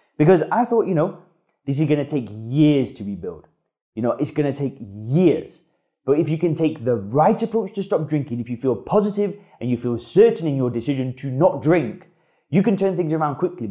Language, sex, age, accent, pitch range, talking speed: English, male, 20-39, British, 125-185 Hz, 225 wpm